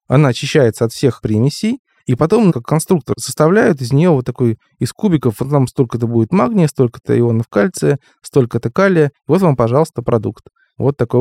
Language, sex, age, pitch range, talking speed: Russian, male, 20-39, 115-145 Hz, 170 wpm